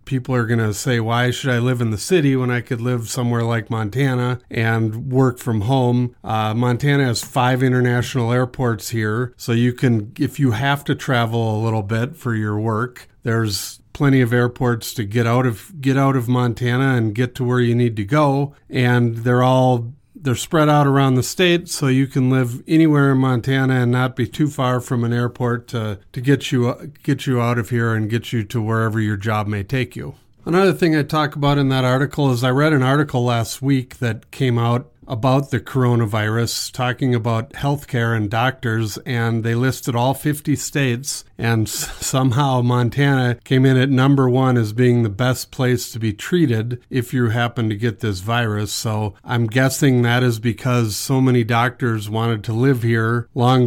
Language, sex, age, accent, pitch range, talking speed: English, male, 40-59, American, 115-130 Hz, 195 wpm